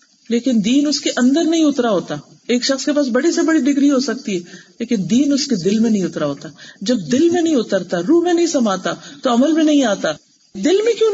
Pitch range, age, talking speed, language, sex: 210-290 Hz, 40-59, 240 wpm, Urdu, female